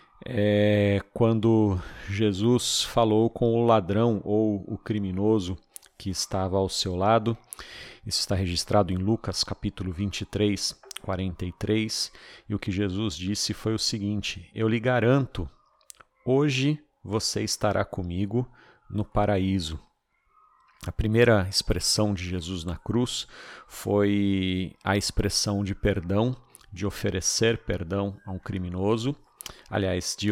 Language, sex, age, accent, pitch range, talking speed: Portuguese, male, 40-59, Brazilian, 95-110 Hz, 120 wpm